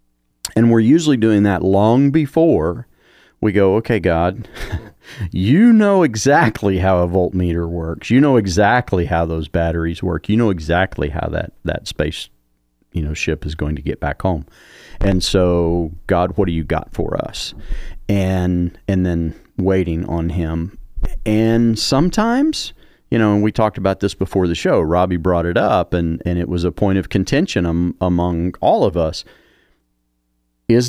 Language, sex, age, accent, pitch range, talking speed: English, male, 40-59, American, 85-105 Hz, 165 wpm